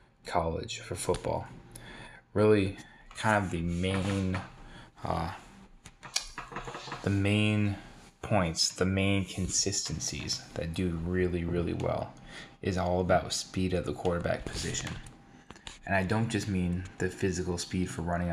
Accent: American